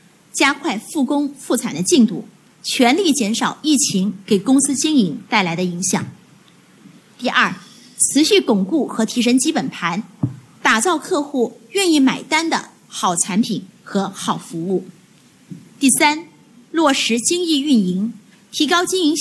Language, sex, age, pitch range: Chinese, female, 30-49, 205-280 Hz